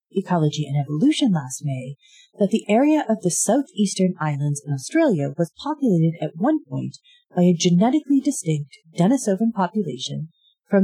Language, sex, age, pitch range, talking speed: English, female, 30-49, 160-270 Hz, 145 wpm